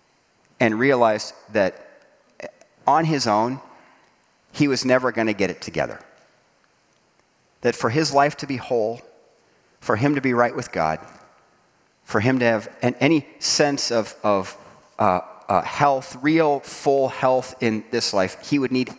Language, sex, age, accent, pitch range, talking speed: English, male, 40-59, American, 120-170 Hz, 150 wpm